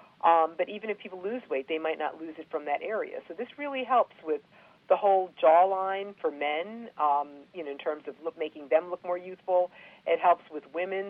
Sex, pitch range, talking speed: female, 155-195 Hz, 215 wpm